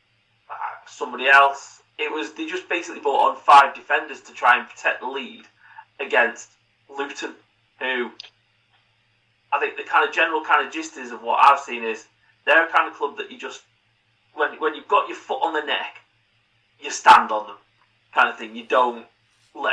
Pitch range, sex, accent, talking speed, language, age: 115-185 Hz, male, British, 190 wpm, English, 30-49